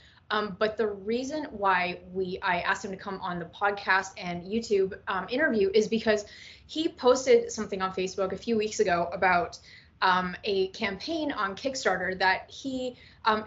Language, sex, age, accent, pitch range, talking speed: English, female, 20-39, American, 190-235 Hz, 170 wpm